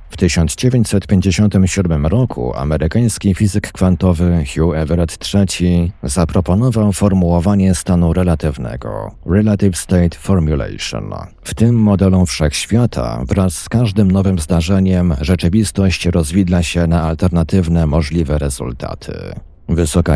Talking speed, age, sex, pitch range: 100 wpm, 50-69, male, 85-100 Hz